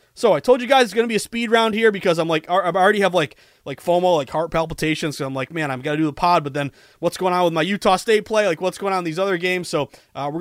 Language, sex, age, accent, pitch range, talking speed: English, male, 30-49, American, 140-185 Hz, 330 wpm